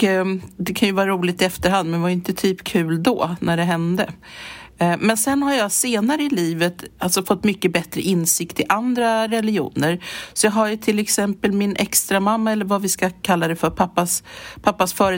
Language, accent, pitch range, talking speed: English, Swedish, 170-205 Hz, 200 wpm